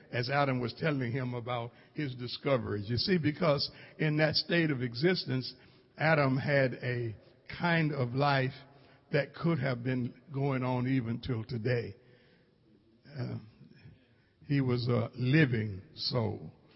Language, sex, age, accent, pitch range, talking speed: English, male, 60-79, American, 125-160 Hz, 135 wpm